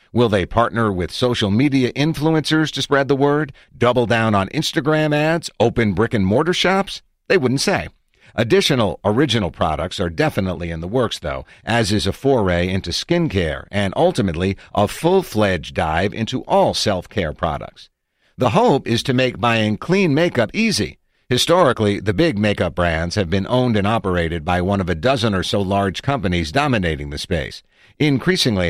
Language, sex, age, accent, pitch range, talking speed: English, male, 50-69, American, 95-135 Hz, 165 wpm